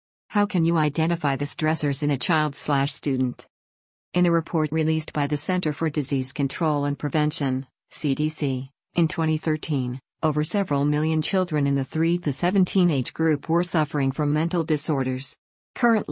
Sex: female